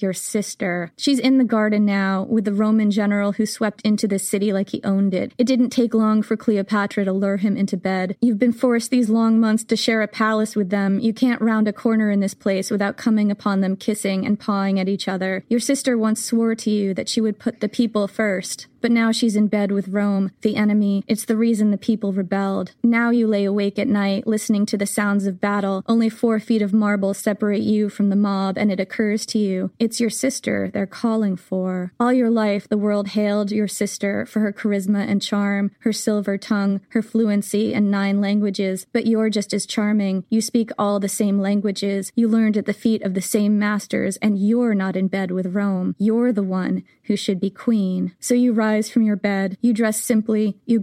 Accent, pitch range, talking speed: American, 200-225 Hz, 220 wpm